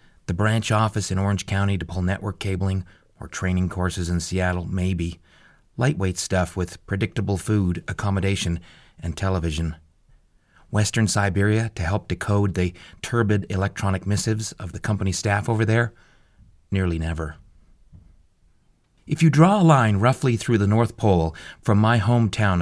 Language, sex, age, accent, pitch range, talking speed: English, male, 30-49, American, 90-110 Hz, 145 wpm